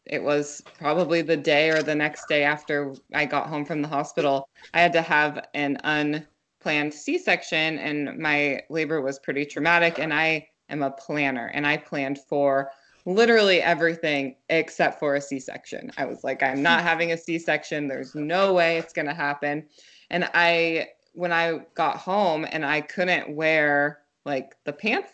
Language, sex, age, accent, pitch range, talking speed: English, female, 20-39, American, 145-170 Hz, 170 wpm